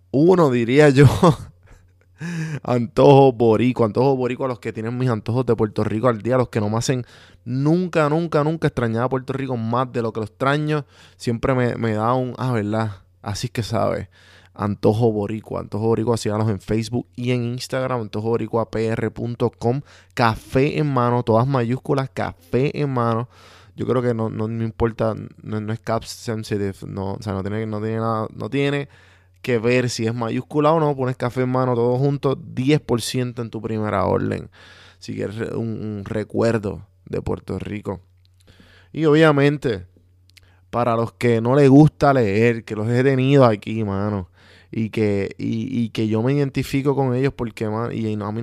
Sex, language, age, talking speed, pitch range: male, Spanish, 20-39, 185 wpm, 105-135 Hz